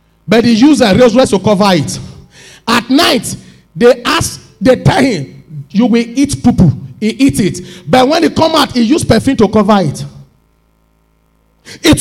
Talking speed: 170 wpm